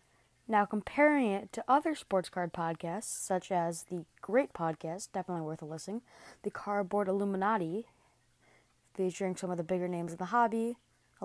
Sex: female